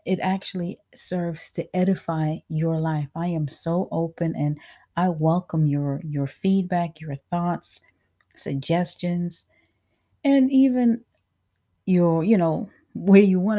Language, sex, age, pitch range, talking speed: English, female, 30-49, 150-185 Hz, 125 wpm